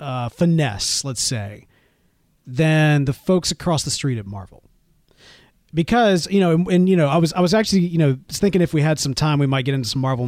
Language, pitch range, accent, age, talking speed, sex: English, 135-190 Hz, American, 30-49, 230 wpm, male